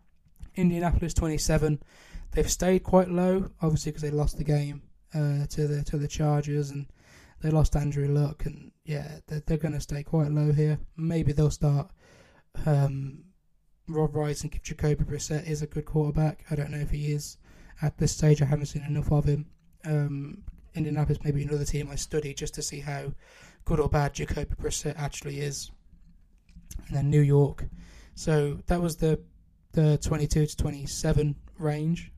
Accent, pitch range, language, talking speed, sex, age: British, 145-155 Hz, English, 175 wpm, male, 20-39